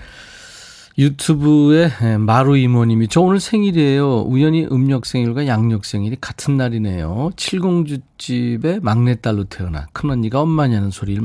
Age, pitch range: 40-59, 100-145 Hz